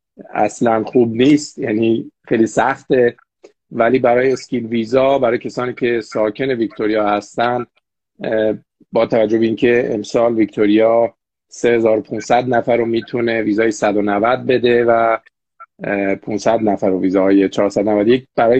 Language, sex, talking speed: Persian, male, 115 wpm